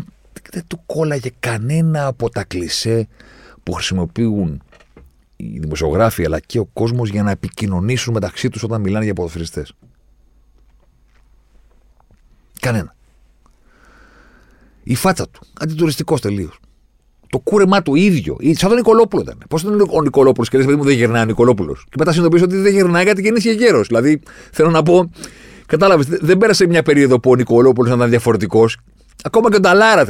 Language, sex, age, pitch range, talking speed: Greek, male, 40-59, 105-165 Hz, 155 wpm